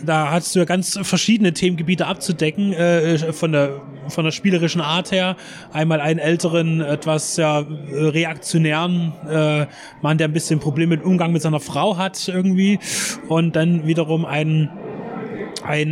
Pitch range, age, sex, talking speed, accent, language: 155-170 Hz, 20-39, male, 150 wpm, German, German